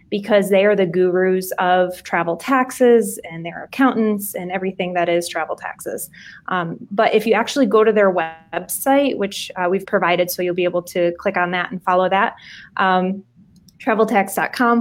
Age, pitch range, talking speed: 20-39, 185-225 Hz, 175 wpm